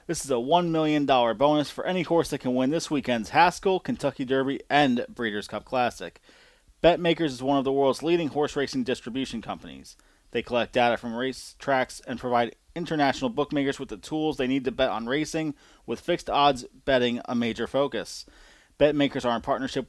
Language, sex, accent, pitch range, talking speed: English, male, American, 120-150 Hz, 185 wpm